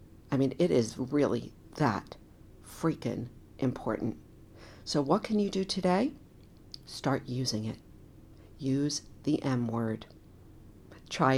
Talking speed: 115 wpm